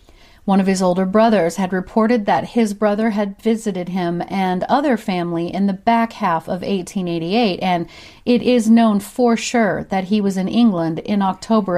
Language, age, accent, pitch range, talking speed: English, 40-59, American, 175-230 Hz, 180 wpm